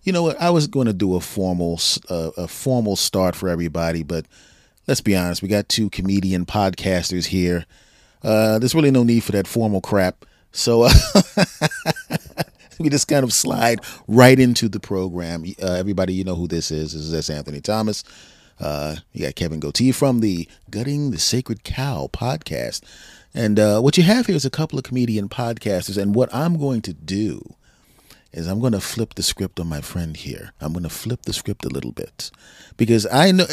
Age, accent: 30-49, American